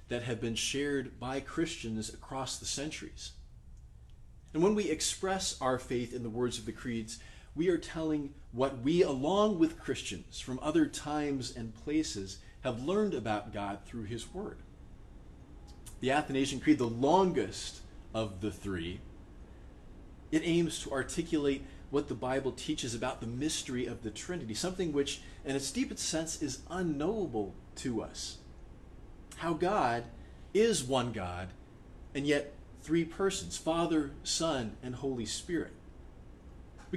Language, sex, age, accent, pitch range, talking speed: English, male, 30-49, American, 100-155 Hz, 145 wpm